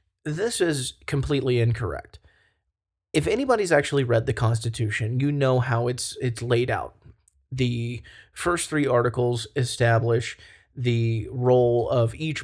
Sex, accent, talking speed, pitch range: male, American, 125 wpm, 115-130 Hz